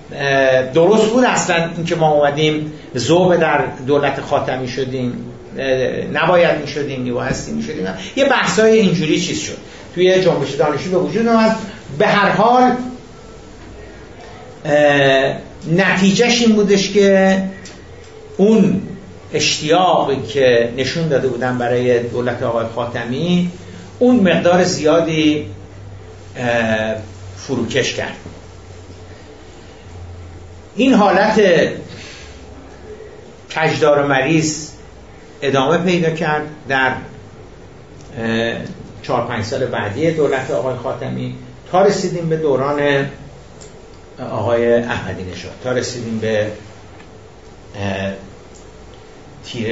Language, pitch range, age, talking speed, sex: Persian, 105-165 Hz, 60-79, 95 wpm, male